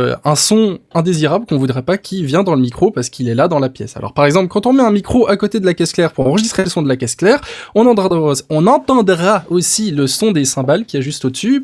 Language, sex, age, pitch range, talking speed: French, male, 20-39, 130-190 Hz, 270 wpm